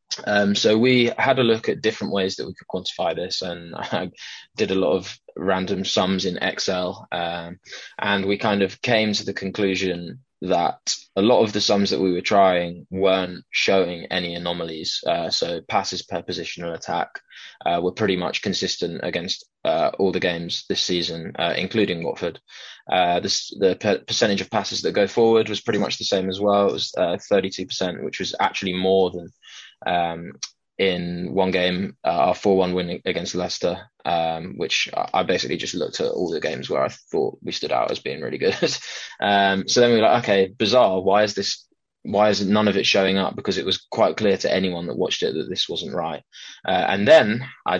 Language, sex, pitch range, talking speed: English, male, 90-110 Hz, 200 wpm